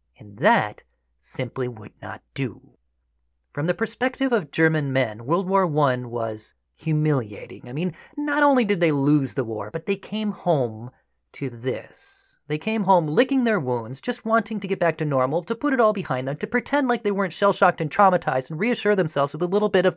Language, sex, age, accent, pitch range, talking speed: English, male, 30-49, American, 130-200 Hz, 200 wpm